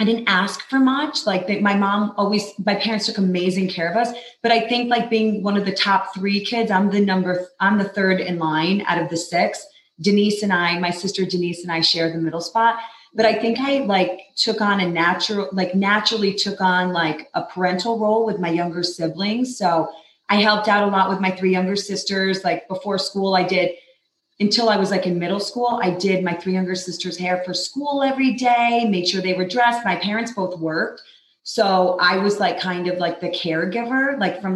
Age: 30-49